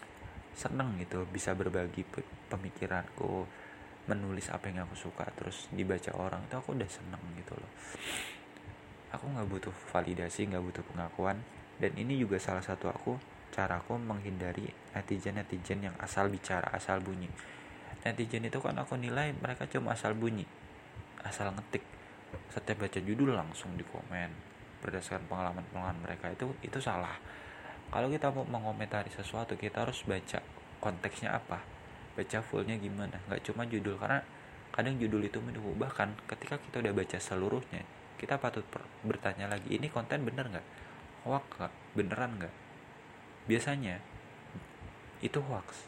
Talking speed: 140 wpm